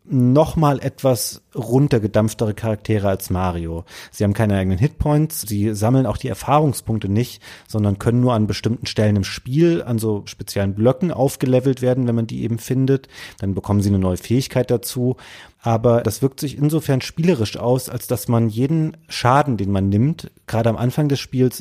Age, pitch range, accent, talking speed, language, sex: 30-49, 105-130 Hz, German, 180 wpm, German, male